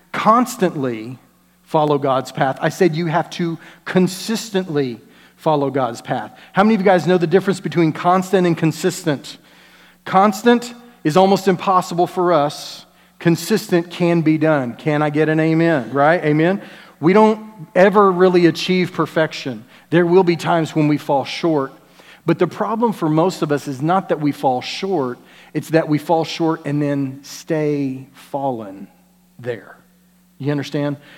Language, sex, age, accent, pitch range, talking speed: English, male, 40-59, American, 145-180 Hz, 155 wpm